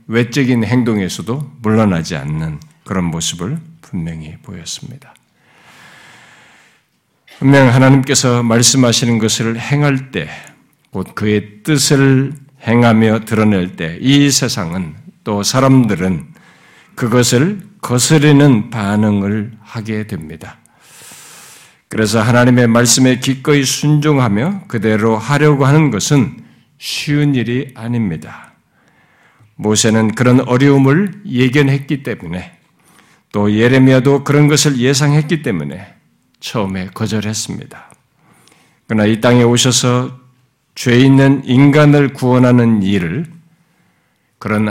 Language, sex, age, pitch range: Korean, male, 60-79, 110-140 Hz